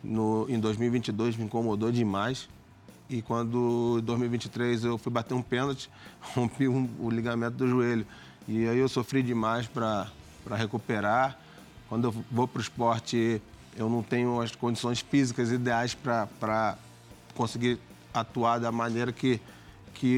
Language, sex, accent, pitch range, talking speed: Portuguese, male, Brazilian, 110-125 Hz, 140 wpm